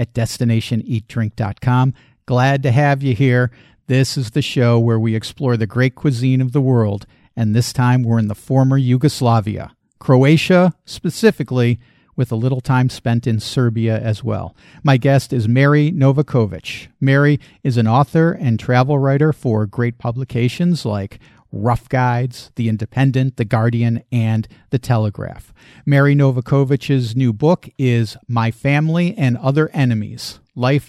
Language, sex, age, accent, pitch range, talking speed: English, male, 50-69, American, 115-140 Hz, 145 wpm